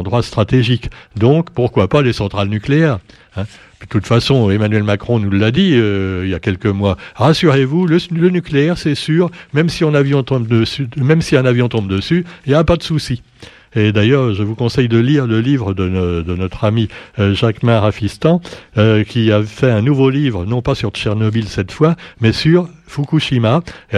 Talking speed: 205 wpm